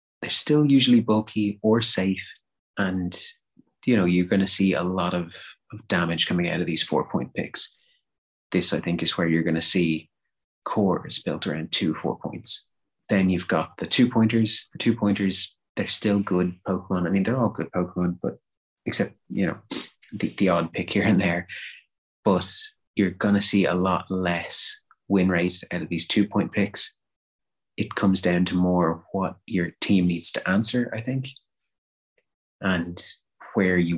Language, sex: English, male